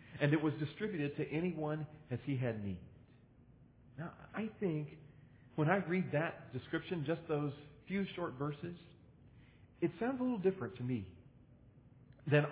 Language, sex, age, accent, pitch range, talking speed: English, male, 40-59, American, 130-175 Hz, 150 wpm